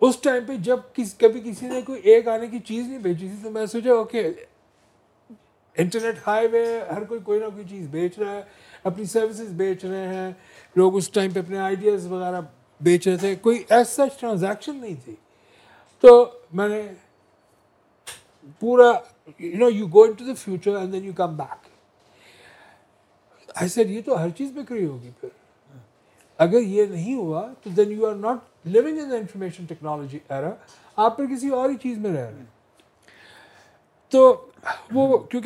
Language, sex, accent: English, male, Indian